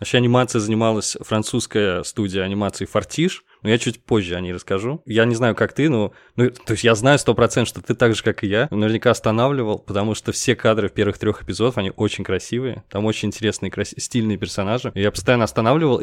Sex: male